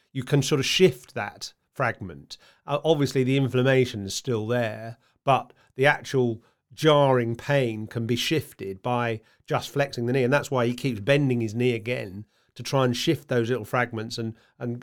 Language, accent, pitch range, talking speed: English, British, 115-135 Hz, 180 wpm